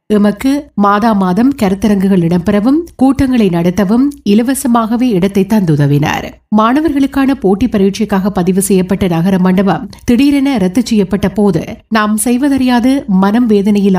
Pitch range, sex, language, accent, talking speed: 195-245 Hz, female, Tamil, native, 110 wpm